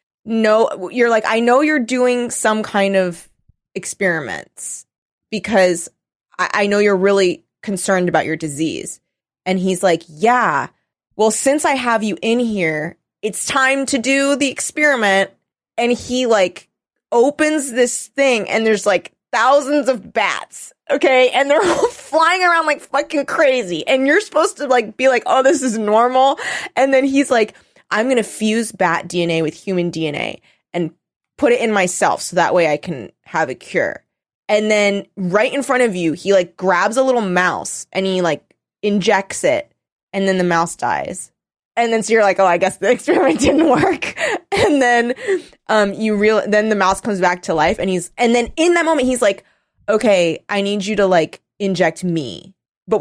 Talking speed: 180 wpm